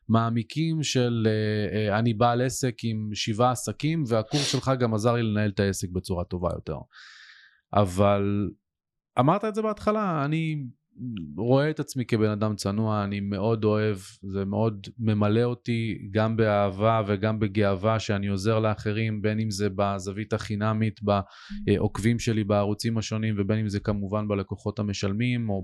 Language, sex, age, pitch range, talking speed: Hebrew, male, 20-39, 105-135 Hz, 145 wpm